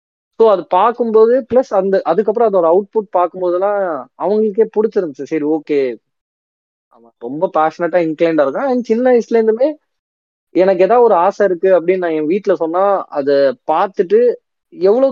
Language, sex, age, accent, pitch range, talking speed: Tamil, male, 20-39, native, 135-195 Hz, 150 wpm